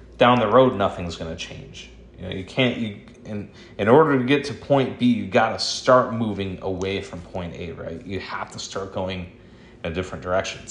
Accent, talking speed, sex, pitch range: American, 205 wpm, male, 95-120 Hz